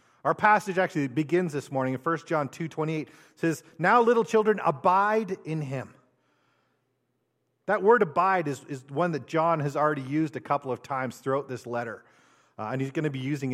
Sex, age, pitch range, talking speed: male, 40-59, 140-195 Hz, 190 wpm